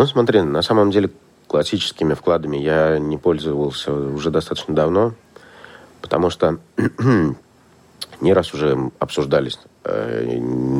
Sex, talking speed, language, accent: male, 110 wpm, Russian, native